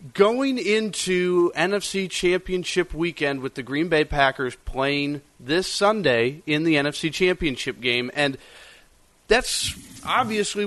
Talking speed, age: 120 wpm, 30-49